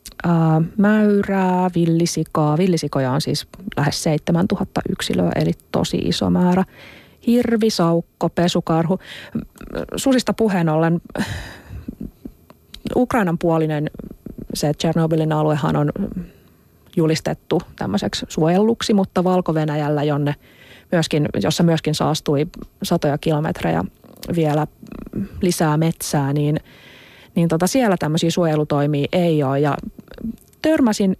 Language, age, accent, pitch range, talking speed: Finnish, 30-49, native, 150-195 Hz, 90 wpm